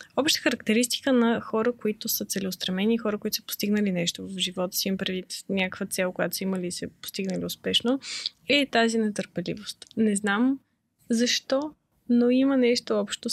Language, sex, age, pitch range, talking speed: Bulgarian, female, 20-39, 195-245 Hz, 160 wpm